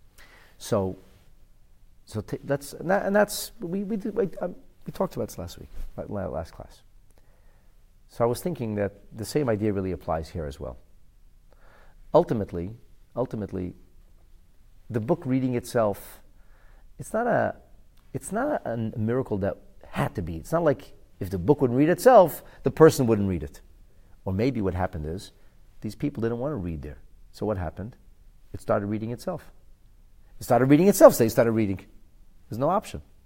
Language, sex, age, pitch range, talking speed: English, male, 40-59, 95-150 Hz, 170 wpm